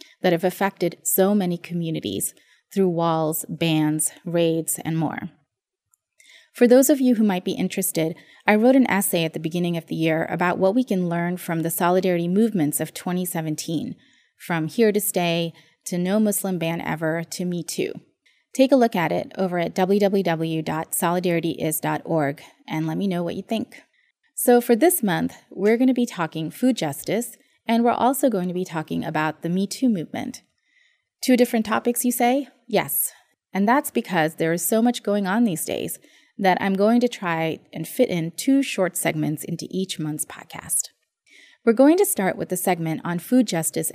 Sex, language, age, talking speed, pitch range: female, English, 20-39, 180 wpm, 165-235 Hz